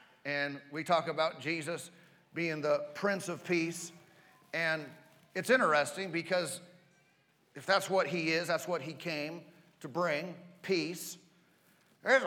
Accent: American